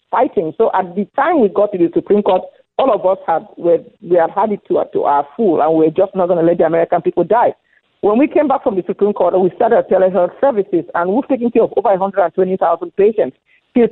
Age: 50-69